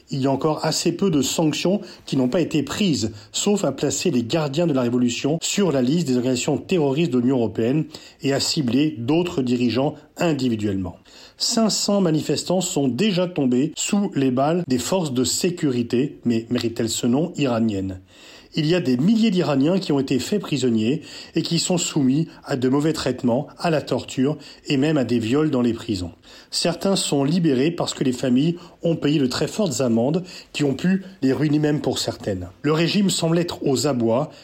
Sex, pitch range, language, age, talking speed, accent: male, 125-175 Hz, French, 40-59, 190 wpm, French